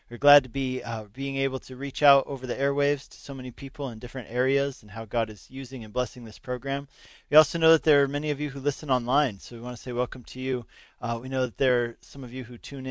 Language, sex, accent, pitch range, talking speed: English, male, American, 120-140 Hz, 280 wpm